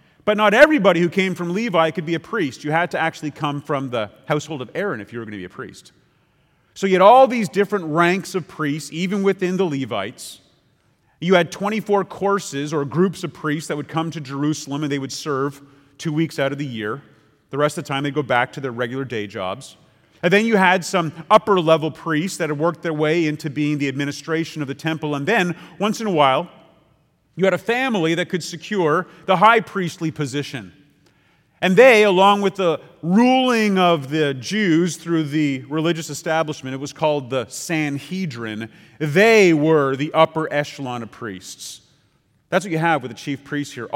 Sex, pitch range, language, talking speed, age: male, 140-185 Hz, English, 200 wpm, 40-59